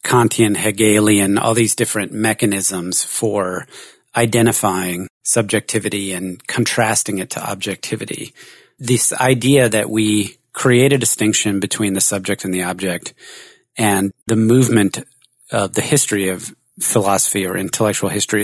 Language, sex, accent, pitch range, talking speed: English, male, American, 100-120 Hz, 125 wpm